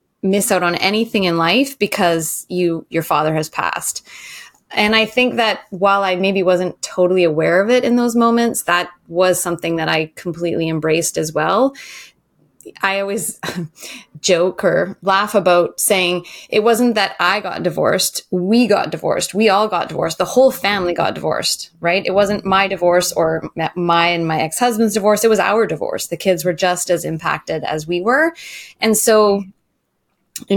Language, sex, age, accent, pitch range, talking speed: English, female, 20-39, American, 175-215 Hz, 175 wpm